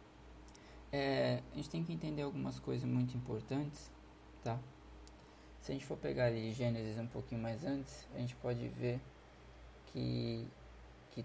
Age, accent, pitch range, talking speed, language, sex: 20-39, Brazilian, 115-145 Hz, 150 wpm, Portuguese, male